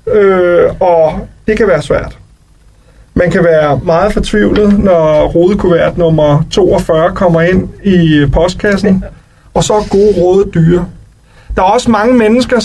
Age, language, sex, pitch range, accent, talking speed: 40-59, Danish, male, 170-220 Hz, native, 140 wpm